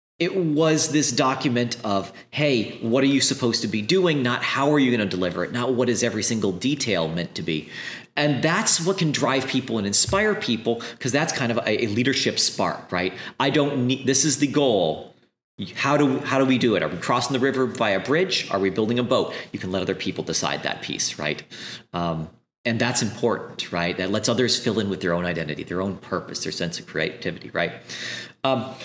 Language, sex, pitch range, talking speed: English, male, 100-135 Hz, 225 wpm